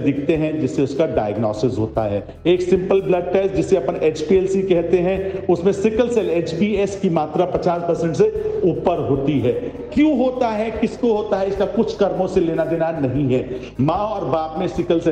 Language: Hindi